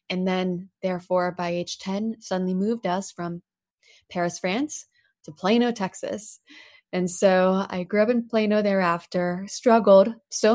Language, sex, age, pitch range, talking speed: English, female, 20-39, 185-220 Hz, 140 wpm